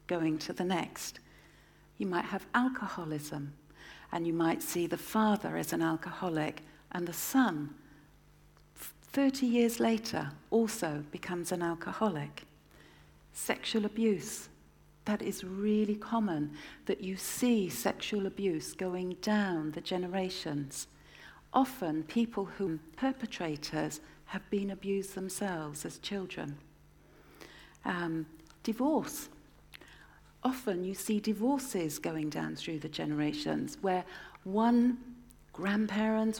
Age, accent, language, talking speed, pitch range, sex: 60-79, British, English, 110 wpm, 160-215 Hz, female